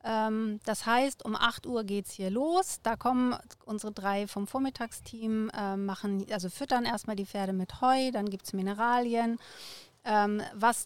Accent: German